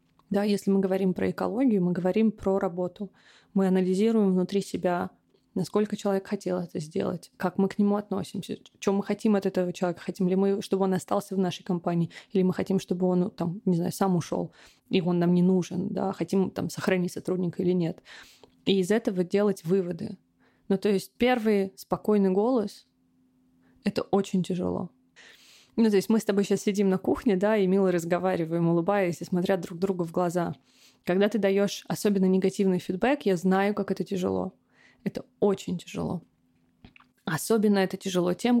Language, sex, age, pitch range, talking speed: Russian, female, 20-39, 180-205 Hz, 180 wpm